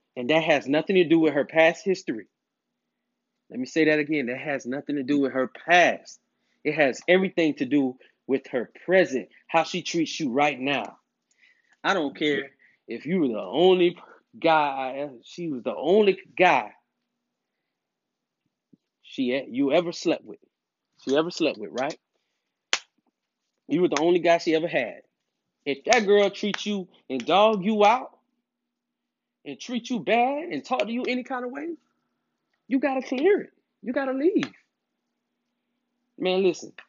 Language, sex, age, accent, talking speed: English, male, 30-49, American, 165 wpm